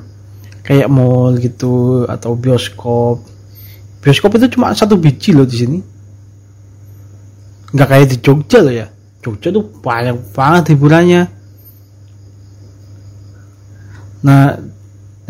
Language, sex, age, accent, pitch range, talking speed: Indonesian, male, 30-49, native, 100-150 Hz, 100 wpm